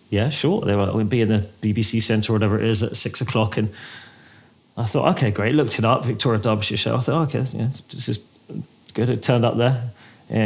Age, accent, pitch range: 30-49, British, 110-130 Hz